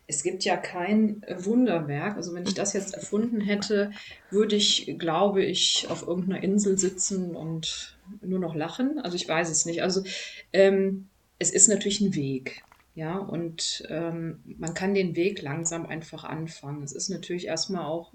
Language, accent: German, German